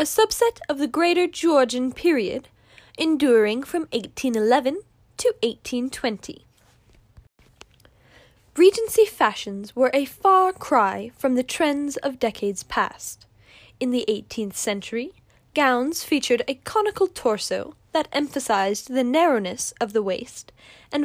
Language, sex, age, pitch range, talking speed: English, female, 10-29, 220-345 Hz, 115 wpm